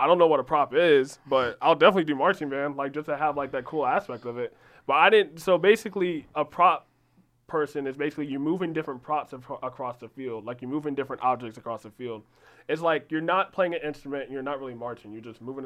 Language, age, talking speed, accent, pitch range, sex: English, 20-39, 245 wpm, American, 130-160 Hz, male